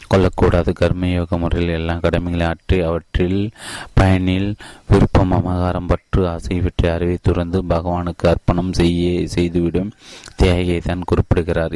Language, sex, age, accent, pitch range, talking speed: Tamil, male, 30-49, native, 85-95 Hz, 50 wpm